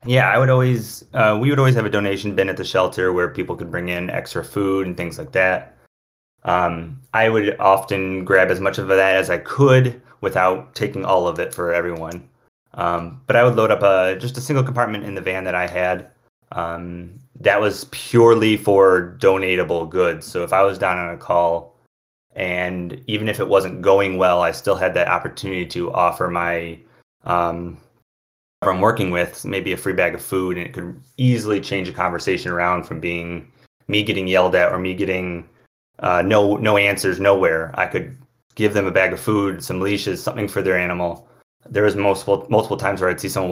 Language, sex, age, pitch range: English, male, 30-49, 90-105 Hz